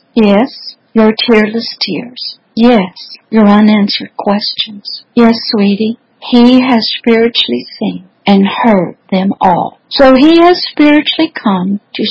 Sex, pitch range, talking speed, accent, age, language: female, 215-265 Hz, 120 wpm, American, 60-79, English